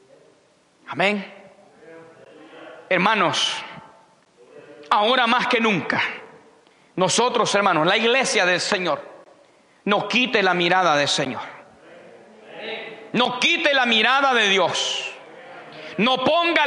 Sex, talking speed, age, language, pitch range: male, 95 wpm, 40-59, Spanish, 225-285 Hz